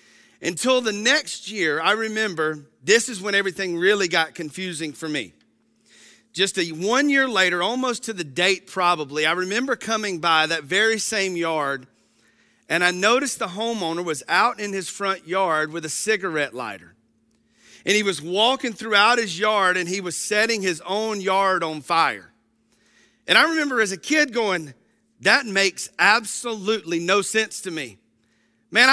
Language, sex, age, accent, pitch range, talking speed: English, male, 40-59, American, 170-220 Hz, 160 wpm